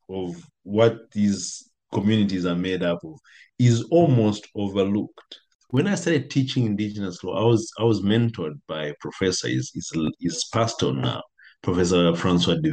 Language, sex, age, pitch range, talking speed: English, male, 50-69, 90-115 Hz, 150 wpm